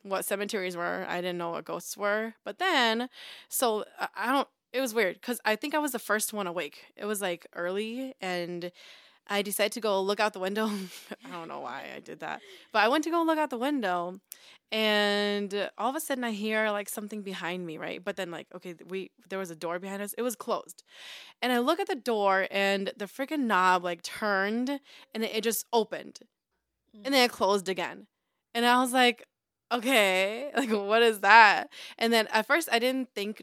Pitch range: 195-255 Hz